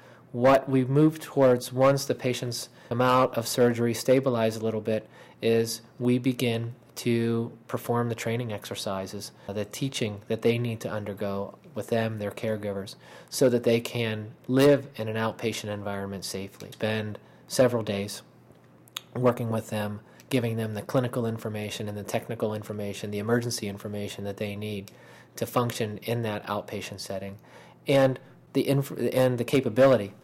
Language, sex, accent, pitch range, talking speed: English, male, American, 105-120 Hz, 155 wpm